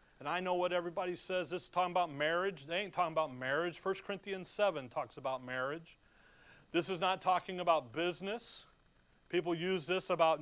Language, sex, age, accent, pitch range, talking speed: English, male, 40-59, American, 175-210 Hz, 185 wpm